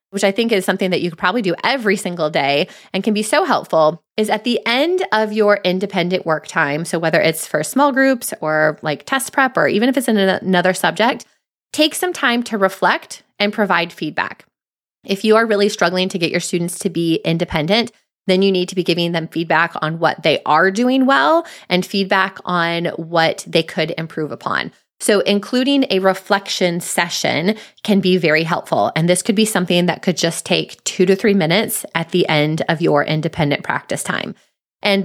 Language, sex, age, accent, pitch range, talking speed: English, female, 20-39, American, 170-215 Hz, 200 wpm